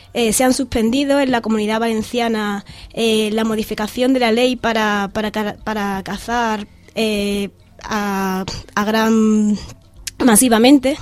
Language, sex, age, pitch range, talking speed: Spanish, female, 20-39, 215-245 Hz, 125 wpm